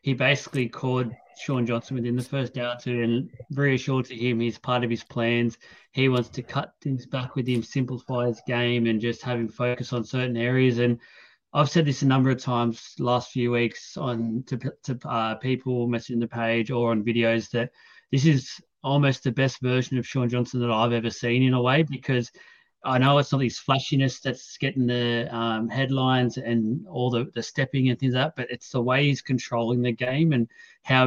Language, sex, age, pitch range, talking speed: English, male, 30-49, 120-135 Hz, 210 wpm